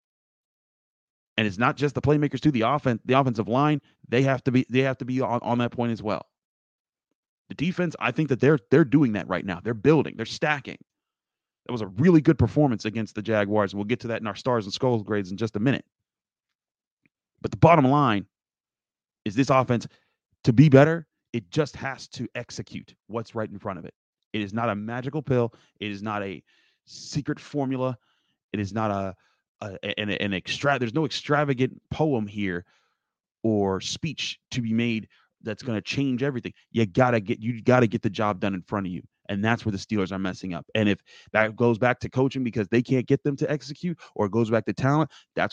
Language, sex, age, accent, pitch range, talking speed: English, male, 30-49, American, 105-135 Hz, 215 wpm